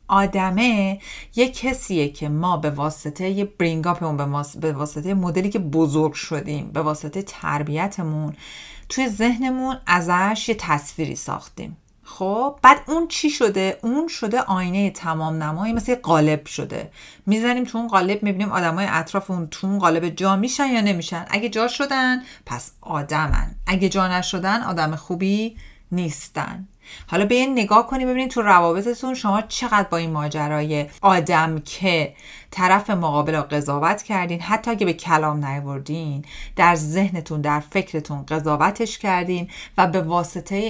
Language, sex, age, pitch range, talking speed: Persian, female, 40-59, 155-205 Hz, 145 wpm